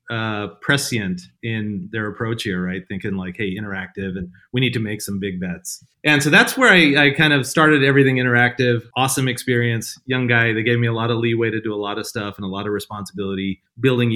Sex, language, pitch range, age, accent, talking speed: male, English, 100-130 Hz, 30-49, American, 225 wpm